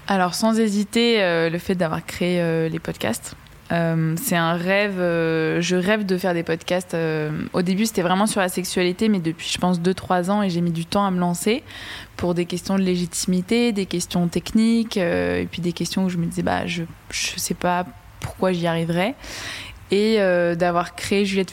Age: 20-39